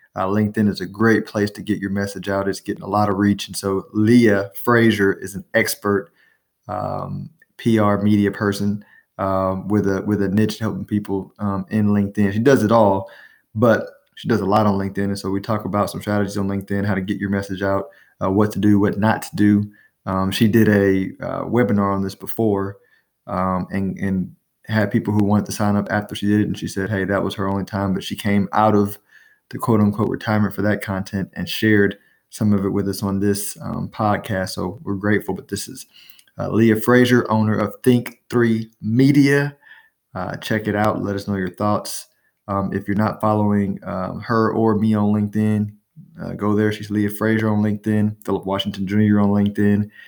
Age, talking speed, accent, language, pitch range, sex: 20-39, 205 wpm, American, English, 100-110 Hz, male